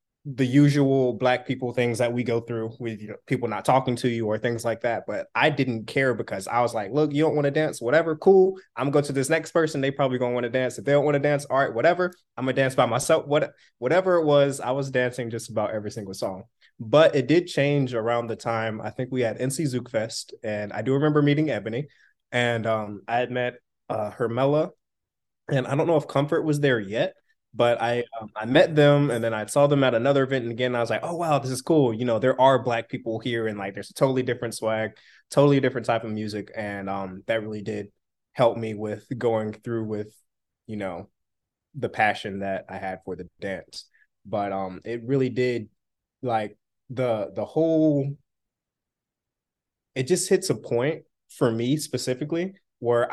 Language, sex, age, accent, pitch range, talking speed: English, male, 20-39, American, 110-140 Hz, 220 wpm